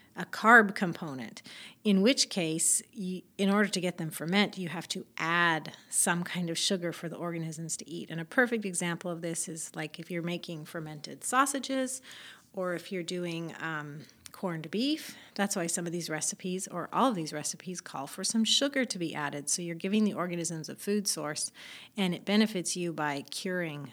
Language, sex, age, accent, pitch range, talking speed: English, female, 30-49, American, 170-220 Hz, 195 wpm